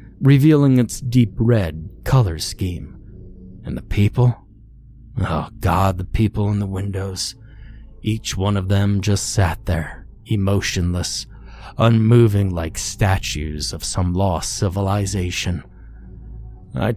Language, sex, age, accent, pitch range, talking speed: English, male, 30-49, American, 90-115 Hz, 115 wpm